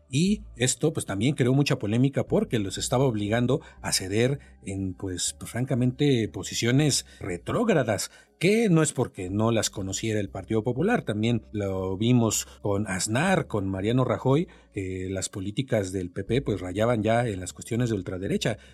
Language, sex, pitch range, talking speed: Spanish, male, 100-130 Hz, 160 wpm